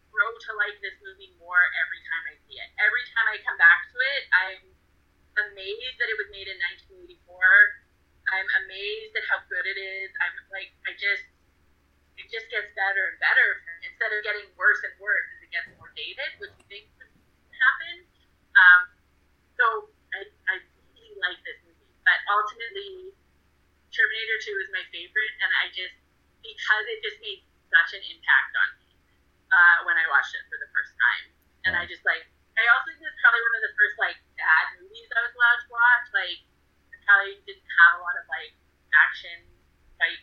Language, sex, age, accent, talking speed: English, female, 20-39, American, 190 wpm